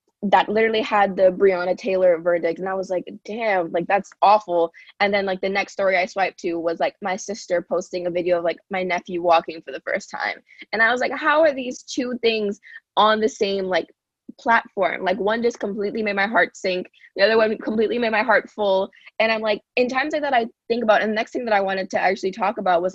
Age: 20-39